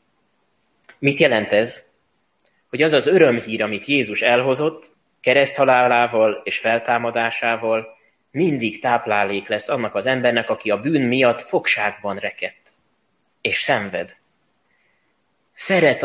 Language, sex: Hungarian, male